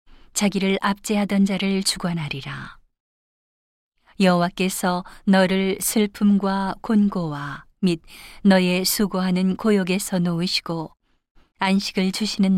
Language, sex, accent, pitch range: Korean, female, native, 175-205 Hz